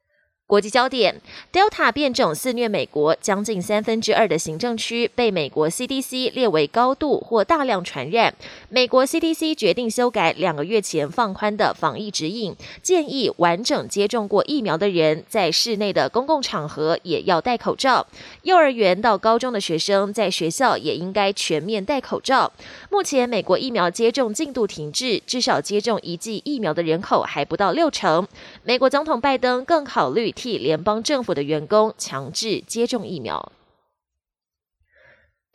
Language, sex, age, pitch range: Chinese, female, 20-39, 180-265 Hz